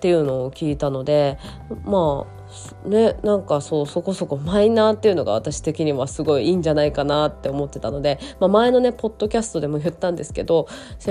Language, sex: Japanese, female